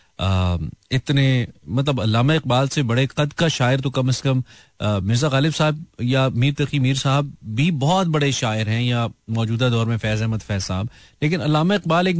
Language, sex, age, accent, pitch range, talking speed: Hindi, male, 30-49, native, 105-140 Hz, 175 wpm